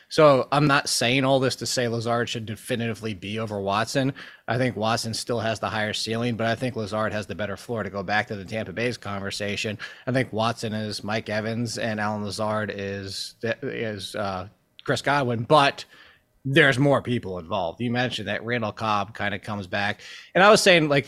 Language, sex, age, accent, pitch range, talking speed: English, male, 20-39, American, 110-145 Hz, 200 wpm